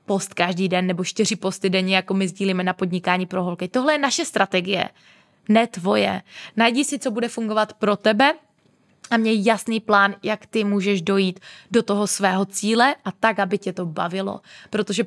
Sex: female